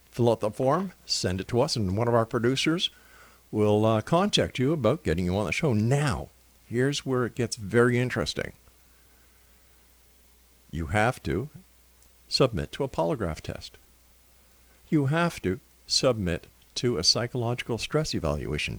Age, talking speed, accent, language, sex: 50-69, 150 wpm, American, English, male